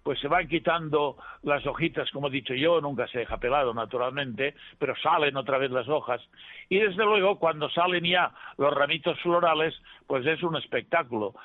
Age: 60-79